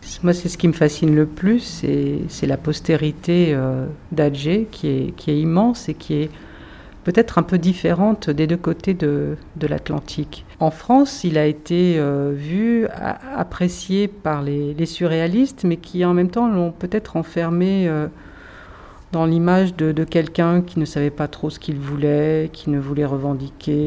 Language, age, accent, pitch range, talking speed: French, 50-69, French, 150-180 Hz, 165 wpm